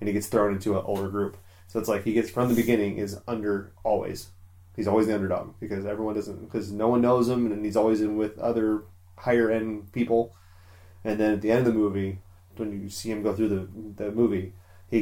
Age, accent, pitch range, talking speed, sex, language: 30-49, American, 95-115 Hz, 230 wpm, male, English